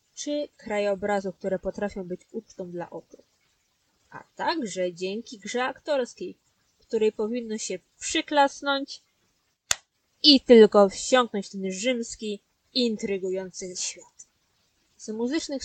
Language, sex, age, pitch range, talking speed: Polish, female, 20-39, 195-255 Hz, 105 wpm